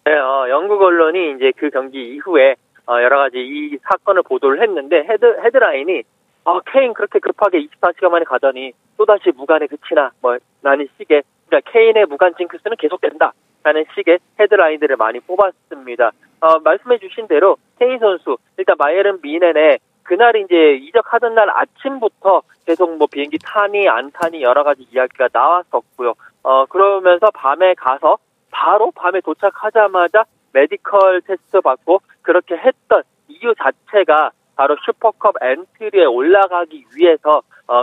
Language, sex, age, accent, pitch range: Korean, male, 30-49, native, 150-225 Hz